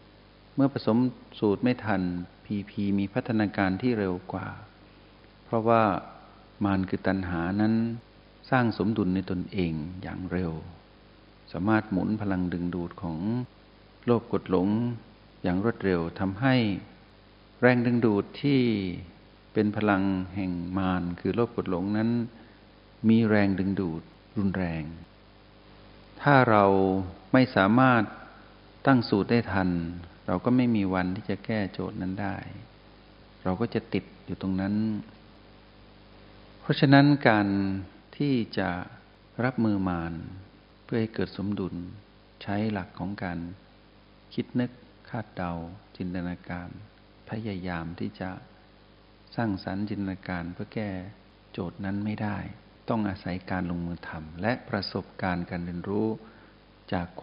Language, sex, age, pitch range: Thai, male, 60-79, 95-110 Hz